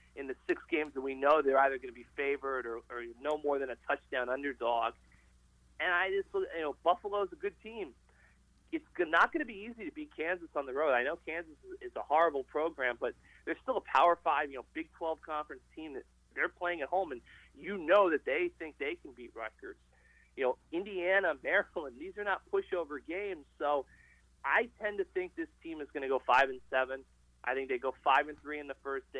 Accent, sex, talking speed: American, male, 225 wpm